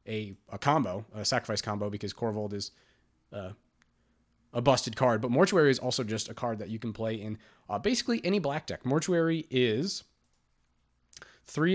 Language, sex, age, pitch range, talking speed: English, male, 30-49, 105-135 Hz, 170 wpm